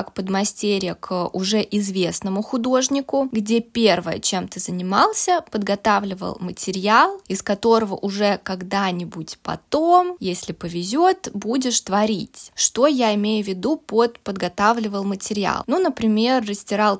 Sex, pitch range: female, 200-245 Hz